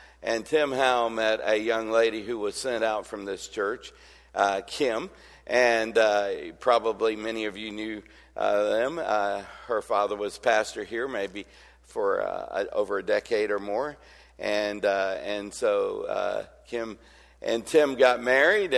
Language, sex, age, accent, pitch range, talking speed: English, male, 50-69, American, 110-170 Hz, 160 wpm